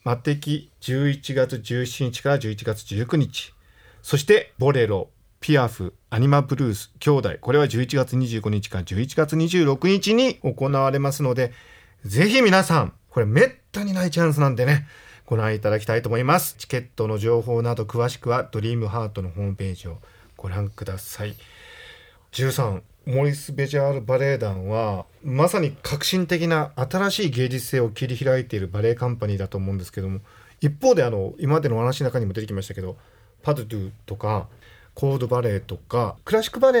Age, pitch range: 40-59, 105-150 Hz